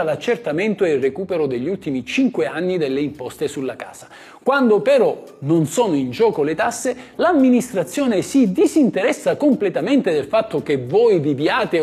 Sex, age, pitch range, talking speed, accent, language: male, 50-69, 170-275 Hz, 145 wpm, native, Italian